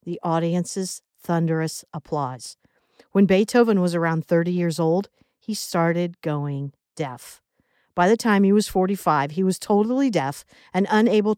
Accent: American